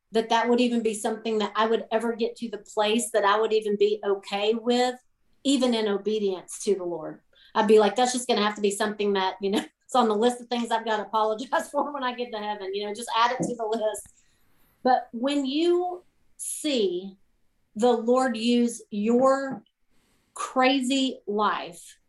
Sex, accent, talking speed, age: female, American, 205 wpm, 40-59